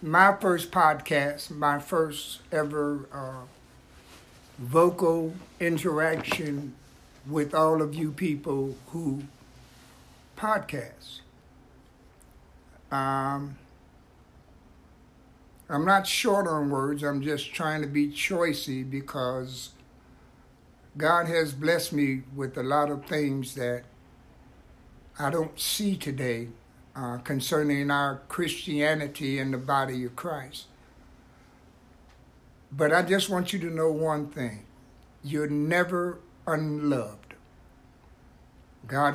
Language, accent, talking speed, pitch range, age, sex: English, American, 100 wpm, 130-160 Hz, 60-79, male